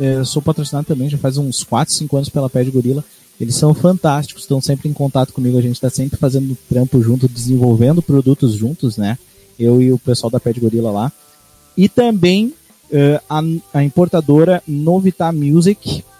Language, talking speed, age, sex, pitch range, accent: Portuguese, 185 wpm, 20-39, male, 130-165 Hz, Brazilian